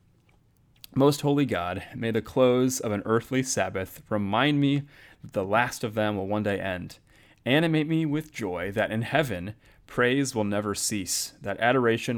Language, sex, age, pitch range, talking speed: English, male, 30-49, 100-120 Hz, 170 wpm